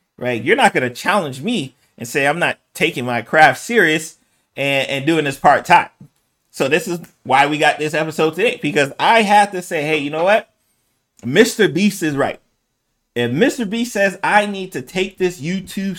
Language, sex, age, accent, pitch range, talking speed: English, male, 30-49, American, 140-190 Hz, 200 wpm